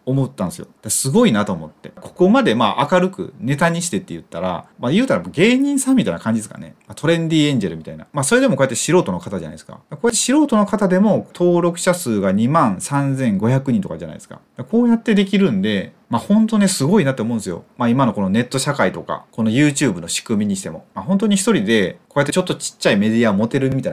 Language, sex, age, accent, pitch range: Japanese, male, 30-49, native, 135-210 Hz